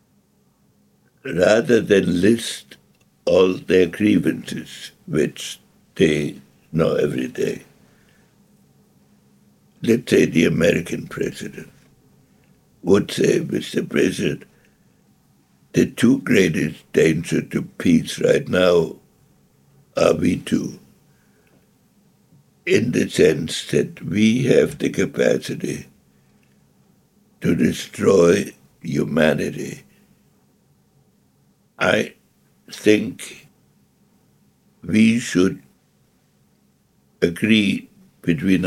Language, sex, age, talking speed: English, male, 60-79, 75 wpm